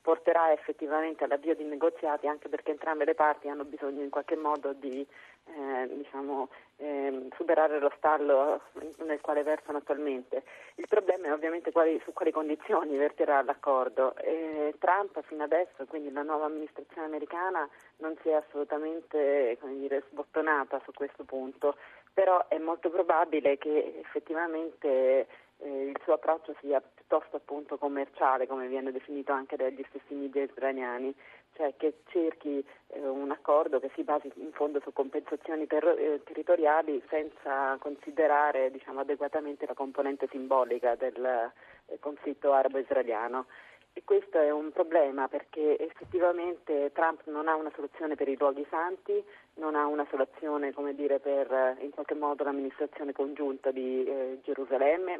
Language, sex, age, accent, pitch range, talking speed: Italian, female, 30-49, native, 140-155 Hz, 140 wpm